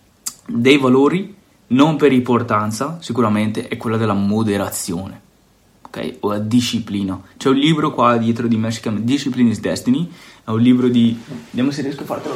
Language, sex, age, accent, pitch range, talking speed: Italian, male, 20-39, native, 120-175 Hz, 170 wpm